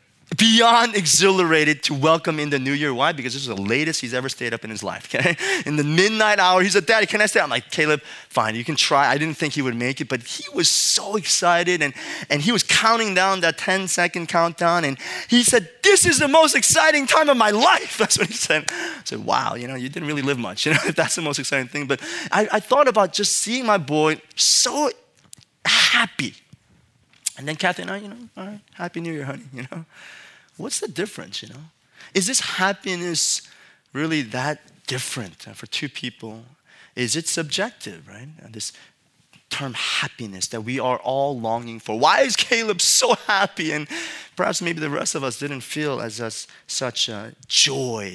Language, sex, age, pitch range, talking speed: English, male, 20-39, 130-195 Hz, 210 wpm